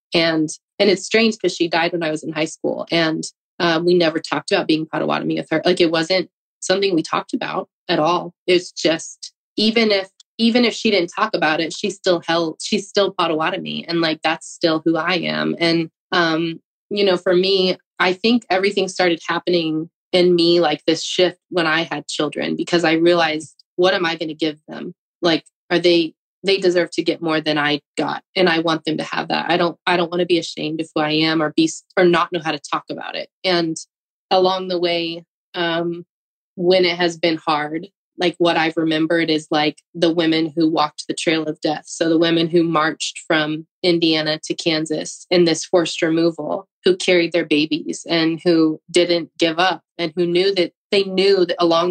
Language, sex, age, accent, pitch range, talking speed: English, female, 20-39, American, 160-180 Hz, 210 wpm